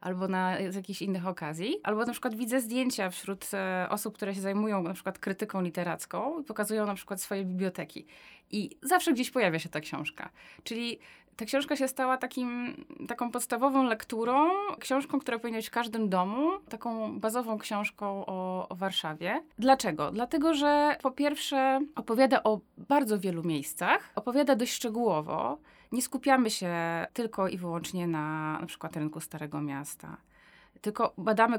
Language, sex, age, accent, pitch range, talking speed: Polish, female, 20-39, native, 190-250 Hz, 155 wpm